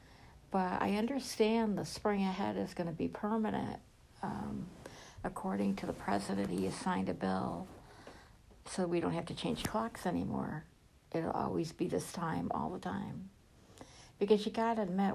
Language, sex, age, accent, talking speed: English, female, 60-79, American, 160 wpm